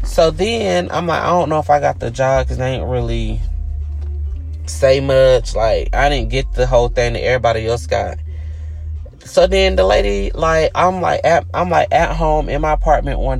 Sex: male